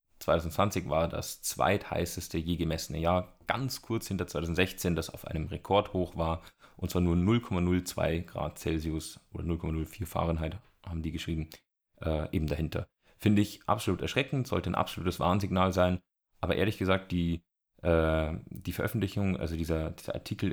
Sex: male